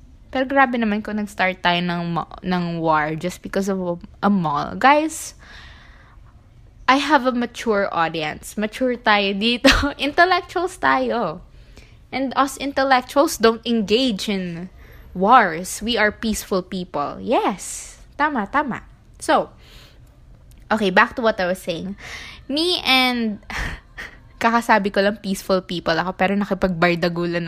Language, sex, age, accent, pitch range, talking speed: Filipino, female, 20-39, native, 185-265 Hz, 125 wpm